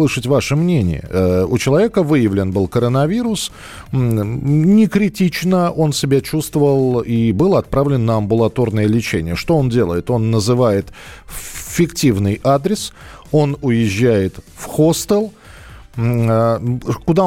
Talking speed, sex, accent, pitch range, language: 105 wpm, male, native, 110-150 Hz, Russian